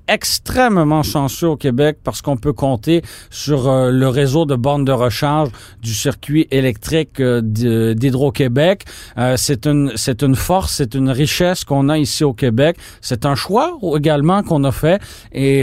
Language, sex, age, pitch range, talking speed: French, male, 40-59, 125-150 Hz, 165 wpm